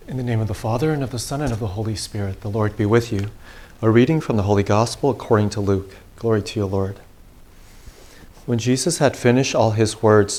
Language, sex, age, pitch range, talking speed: English, male, 40-59, 100-120 Hz, 230 wpm